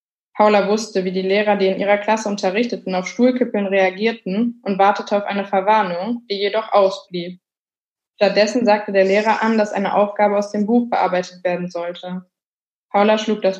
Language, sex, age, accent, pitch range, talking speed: German, female, 20-39, German, 190-220 Hz, 170 wpm